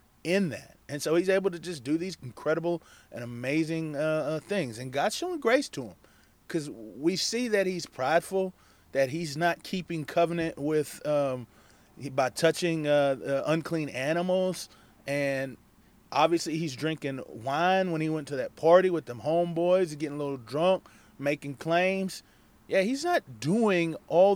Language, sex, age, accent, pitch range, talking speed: English, male, 30-49, American, 140-180 Hz, 165 wpm